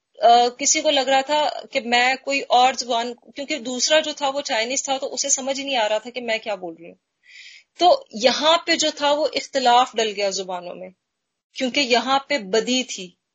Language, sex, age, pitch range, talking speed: Hindi, female, 30-49, 225-275 Hz, 205 wpm